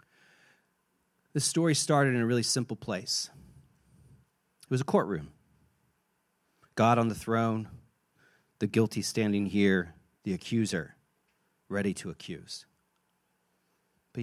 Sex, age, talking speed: male, 40-59, 110 wpm